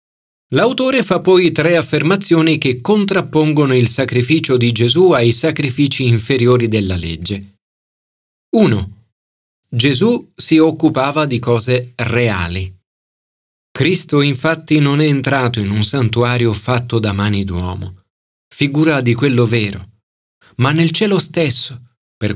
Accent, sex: native, male